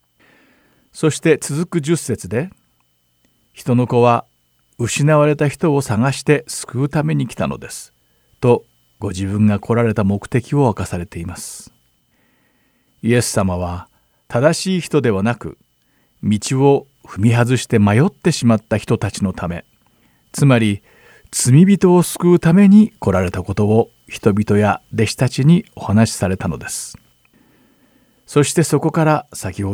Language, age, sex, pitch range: Japanese, 50-69, male, 100-145 Hz